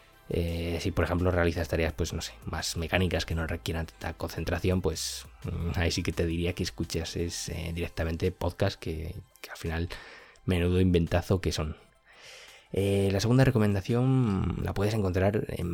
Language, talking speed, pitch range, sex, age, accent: Spanish, 170 wpm, 85-95 Hz, male, 20-39, Spanish